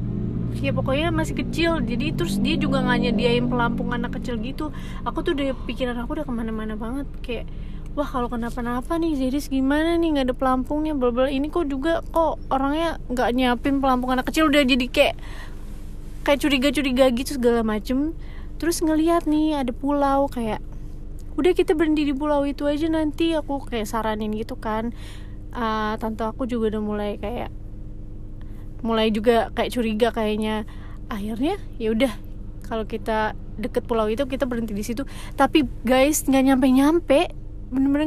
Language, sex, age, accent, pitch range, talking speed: Indonesian, female, 20-39, native, 220-280 Hz, 155 wpm